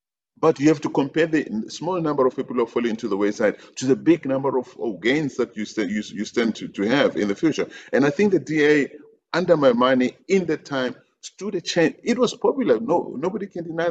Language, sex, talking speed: English, male, 235 wpm